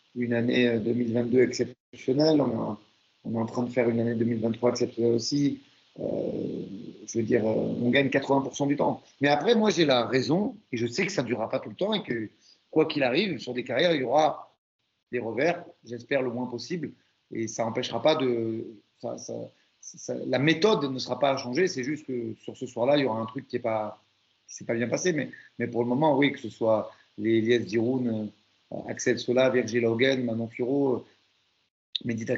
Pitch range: 115-140 Hz